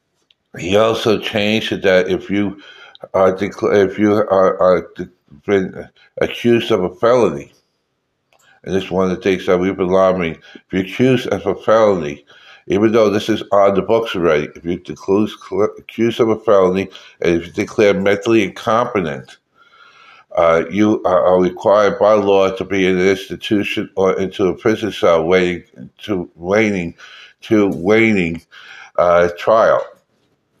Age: 60-79